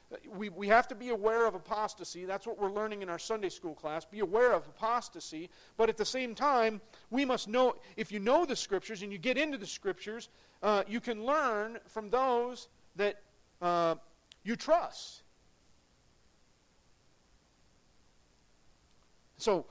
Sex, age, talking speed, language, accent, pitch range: male, 40-59, 155 wpm, English, American, 180-230 Hz